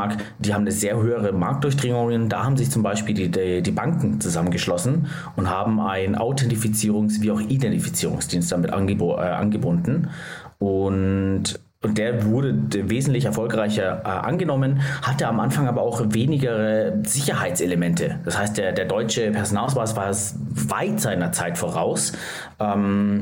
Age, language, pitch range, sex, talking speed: 30-49, German, 105-120 Hz, male, 135 wpm